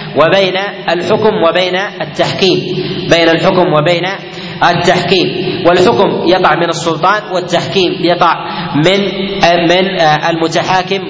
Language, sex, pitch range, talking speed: Arabic, male, 155-185 Hz, 90 wpm